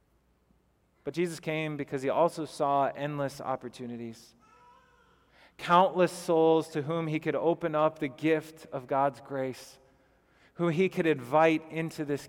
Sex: male